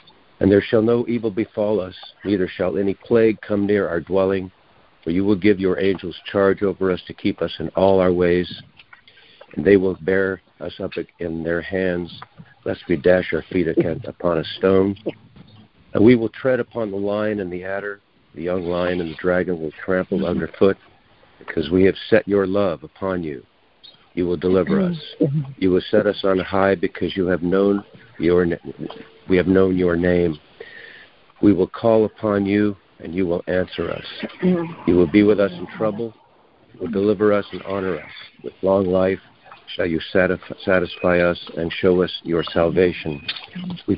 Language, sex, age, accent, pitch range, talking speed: English, male, 50-69, American, 90-100 Hz, 180 wpm